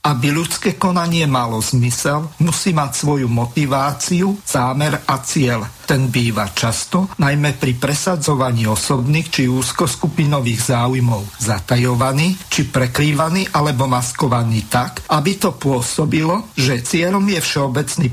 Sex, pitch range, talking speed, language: male, 130-160 Hz, 115 wpm, Slovak